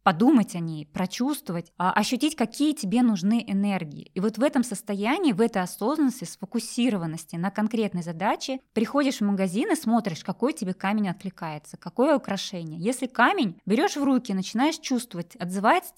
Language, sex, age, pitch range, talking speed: Russian, female, 20-39, 190-245 Hz, 150 wpm